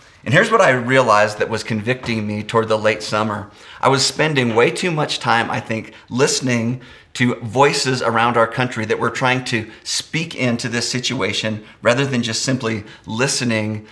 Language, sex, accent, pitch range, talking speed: English, male, American, 110-130 Hz, 175 wpm